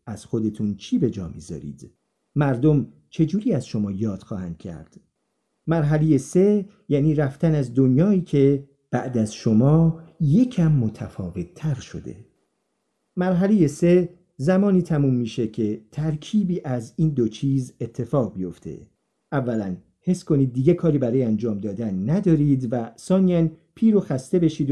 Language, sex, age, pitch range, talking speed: Persian, male, 50-69, 120-165 Hz, 135 wpm